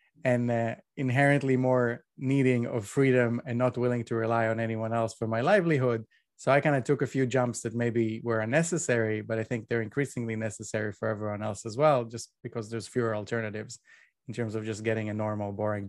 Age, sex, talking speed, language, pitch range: 20-39, male, 205 wpm, English, 115-140 Hz